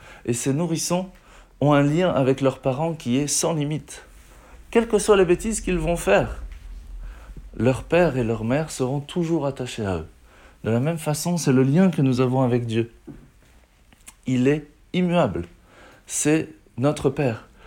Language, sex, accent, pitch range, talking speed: French, male, French, 115-160 Hz, 165 wpm